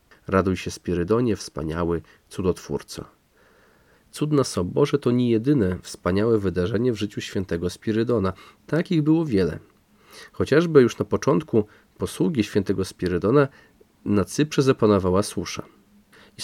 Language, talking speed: Polish, 115 wpm